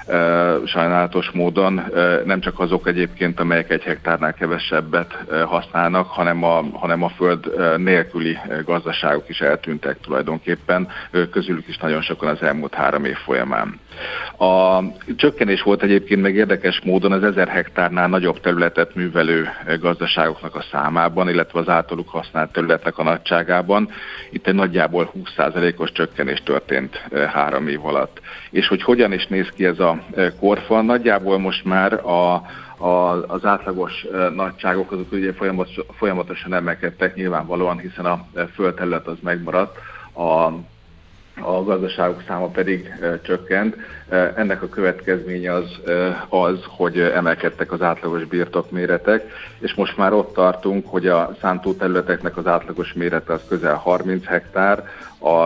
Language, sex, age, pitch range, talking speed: Hungarian, male, 50-69, 85-95 Hz, 130 wpm